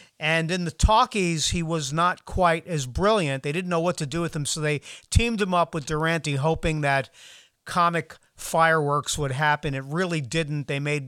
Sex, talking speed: male, 195 wpm